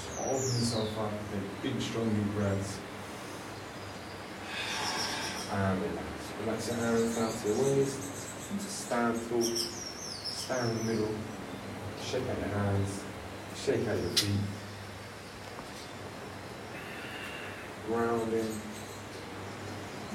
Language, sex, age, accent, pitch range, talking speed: English, male, 30-49, British, 100-110 Hz, 90 wpm